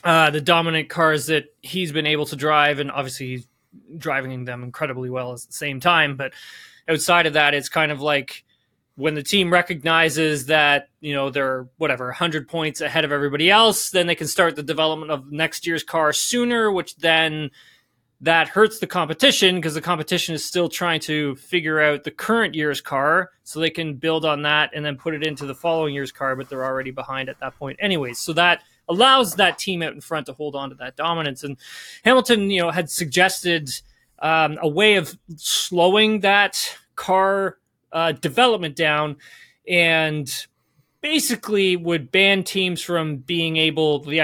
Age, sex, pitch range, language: 20-39, male, 140-175 Hz, English